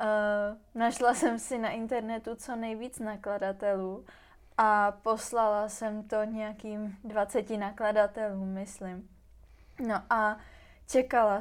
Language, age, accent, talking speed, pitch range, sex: Czech, 20-39, native, 100 wpm, 210-230 Hz, female